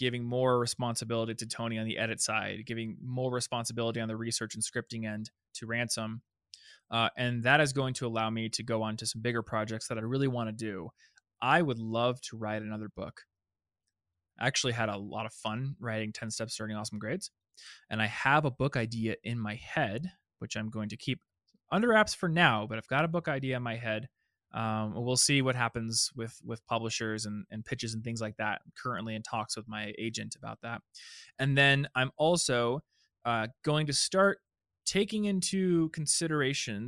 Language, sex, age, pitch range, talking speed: English, male, 20-39, 110-140 Hz, 200 wpm